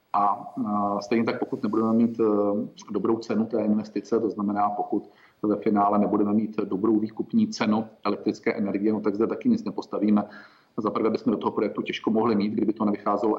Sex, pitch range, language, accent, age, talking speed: male, 105-120 Hz, Czech, native, 40-59, 175 wpm